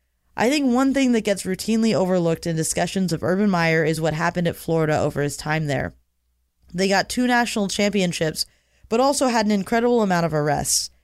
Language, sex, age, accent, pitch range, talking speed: English, female, 20-39, American, 155-200 Hz, 190 wpm